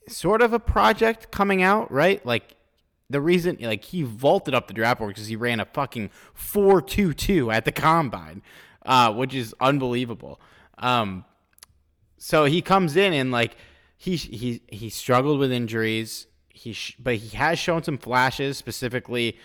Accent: American